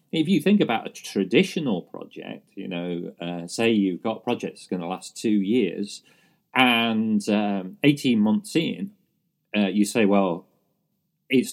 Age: 40-59